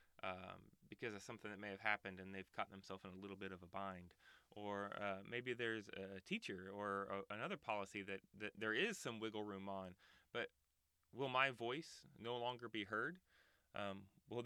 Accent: American